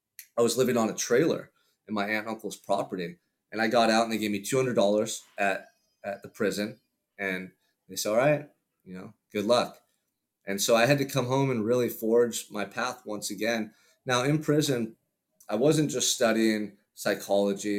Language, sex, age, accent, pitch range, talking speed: English, male, 30-49, American, 105-125 Hz, 185 wpm